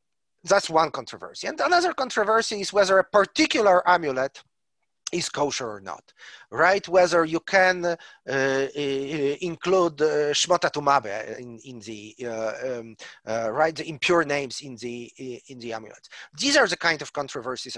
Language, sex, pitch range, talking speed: English, male, 135-200 Hz, 150 wpm